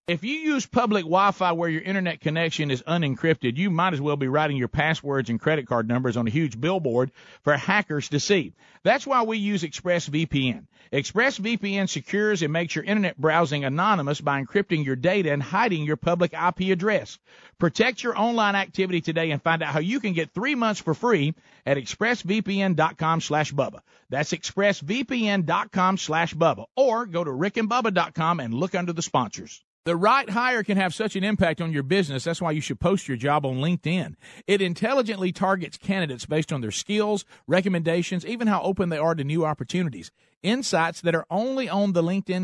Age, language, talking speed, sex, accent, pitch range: 50-69, English, 185 wpm, male, American, 155-205 Hz